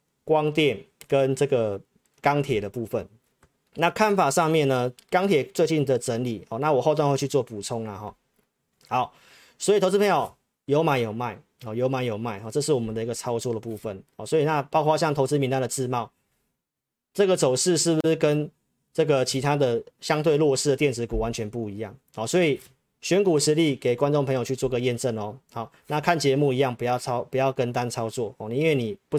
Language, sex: Chinese, male